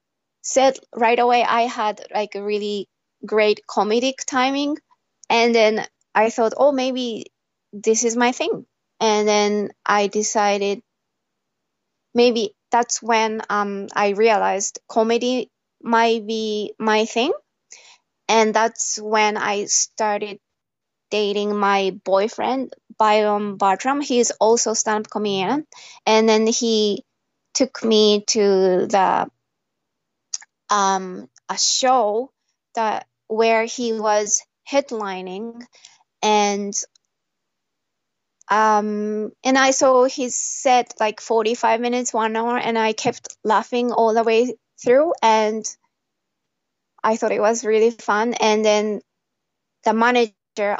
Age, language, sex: 20-39, Japanese, female